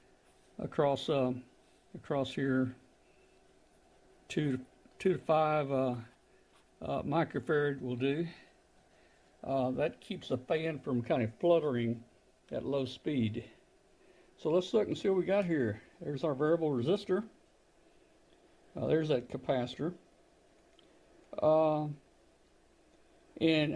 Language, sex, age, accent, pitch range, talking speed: English, male, 60-79, American, 130-180 Hz, 115 wpm